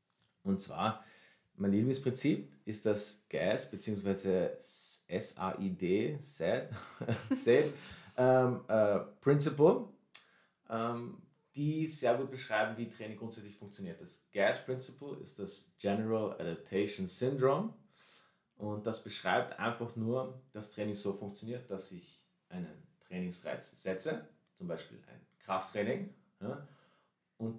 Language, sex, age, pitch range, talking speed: German, male, 30-49, 100-130 Hz, 95 wpm